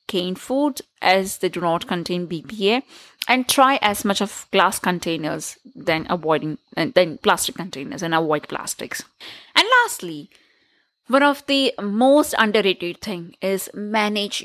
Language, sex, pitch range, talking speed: English, female, 185-260 Hz, 140 wpm